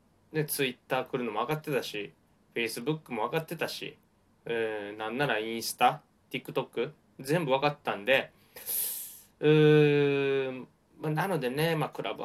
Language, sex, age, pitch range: Japanese, male, 20-39, 115-155 Hz